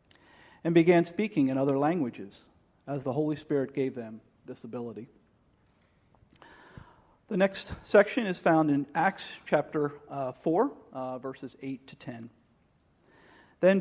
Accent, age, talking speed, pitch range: American, 40-59, 130 wpm, 135-165 Hz